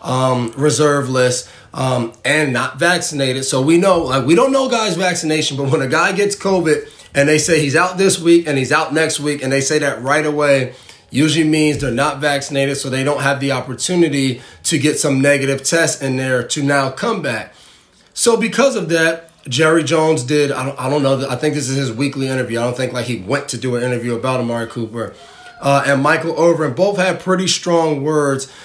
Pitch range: 135-165 Hz